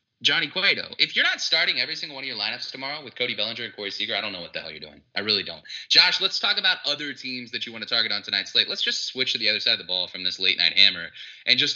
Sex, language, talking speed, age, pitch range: male, English, 310 wpm, 20-39, 115-175 Hz